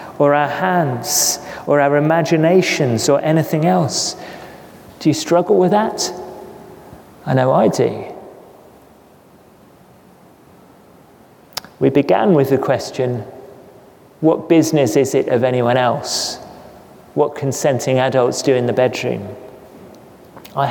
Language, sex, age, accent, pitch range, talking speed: English, male, 30-49, British, 140-195 Hz, 110 wpm